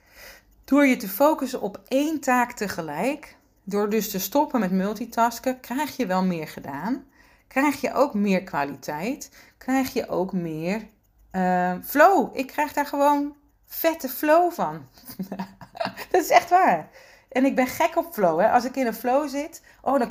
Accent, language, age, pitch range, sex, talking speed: Dutch, Dutch, 40-59, 185-255 Hz, female, 160 wpm